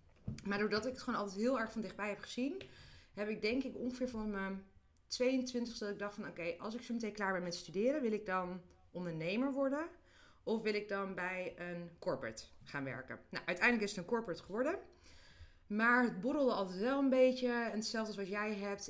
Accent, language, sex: Dutch, Dutch, female